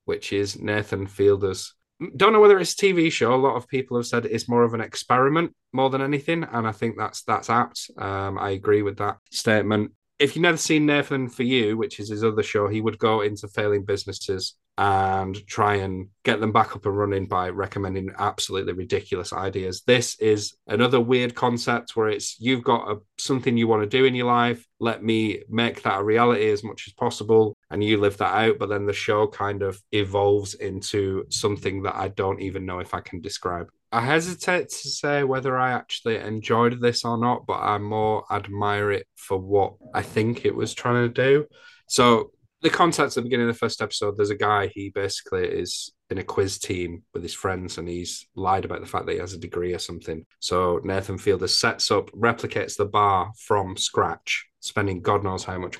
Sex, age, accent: male, 30-49, British